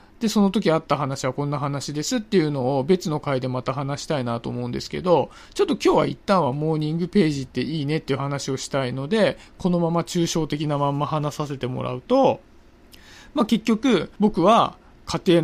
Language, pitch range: Japanese, 140-220 Hz